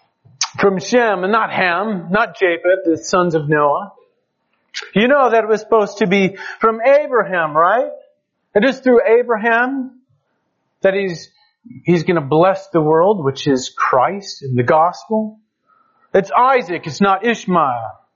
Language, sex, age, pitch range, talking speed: English, male, 40-59, 165-230 Hz, 150 wpm